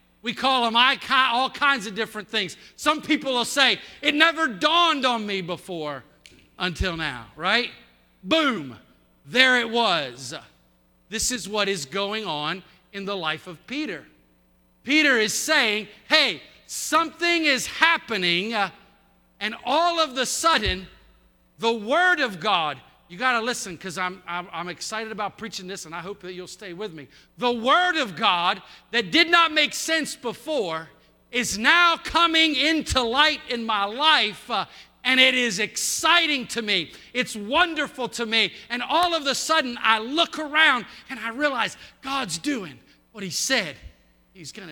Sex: male